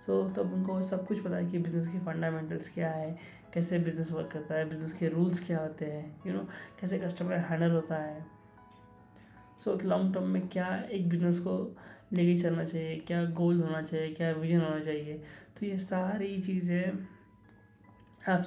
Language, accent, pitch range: Hindi, native, 155-180 Hz